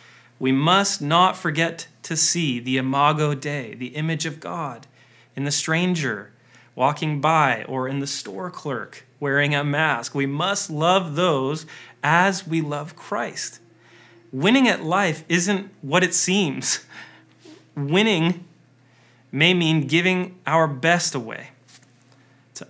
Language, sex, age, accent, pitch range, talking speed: English, male, 30-49, American, 130-170 Hz, 130 wpm